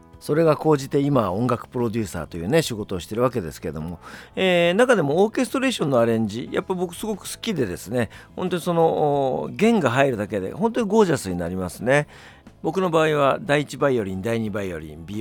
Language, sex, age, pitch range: Japanese, male, 50-69, 100-165 Hz